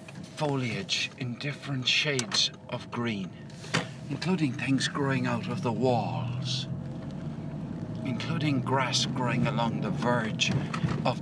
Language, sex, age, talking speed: English, male, 60-79, 105 wpm